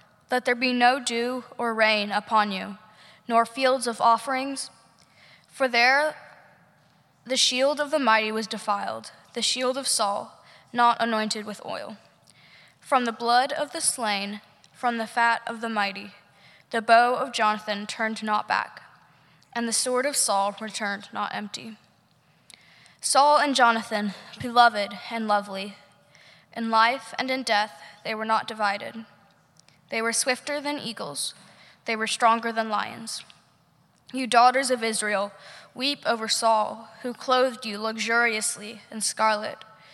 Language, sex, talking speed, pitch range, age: English, female, 145 wpm, 205-245 Hz, 10-29